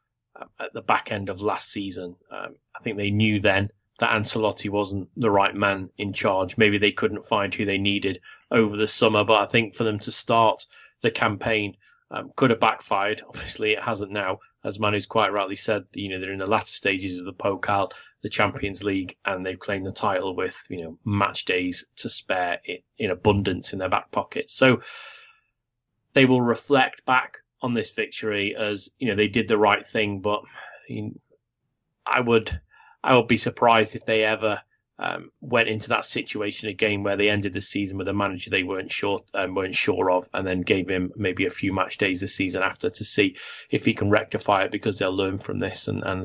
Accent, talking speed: British, 205 wpm